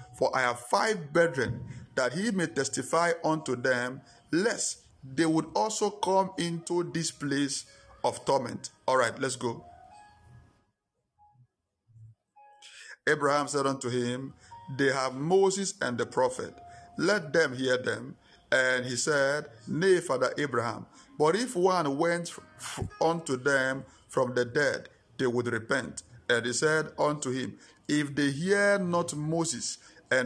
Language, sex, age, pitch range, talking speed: English, male, 50-69, 130-175 Hz, 135 wpm